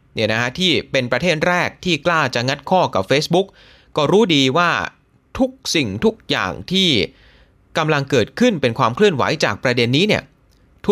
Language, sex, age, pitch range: Thai, male, 30-49, 120-185 Hz